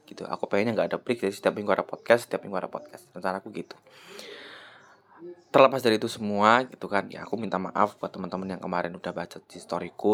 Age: 20-39